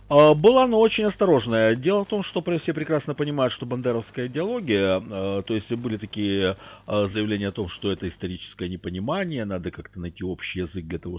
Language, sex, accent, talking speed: Russian, male, native, 170 wpm